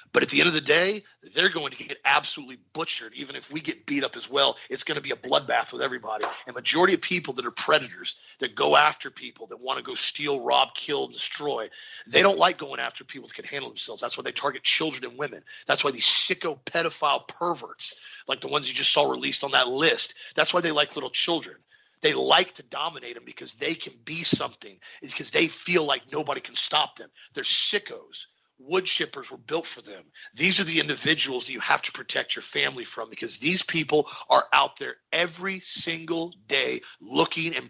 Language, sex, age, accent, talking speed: English, male, 40-59, American, 215 wpm